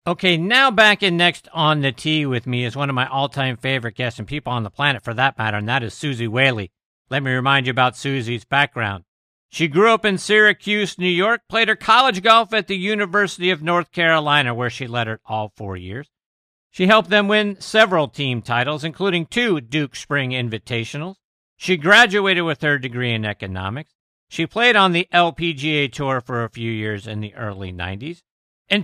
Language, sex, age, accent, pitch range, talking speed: English, male, 50-69, American, 120-180 Hz, 200 wpm